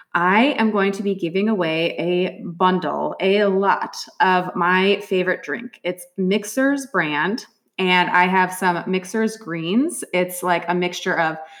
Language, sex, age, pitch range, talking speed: English, female, 20-39, 180-220 Hz, 150 wpm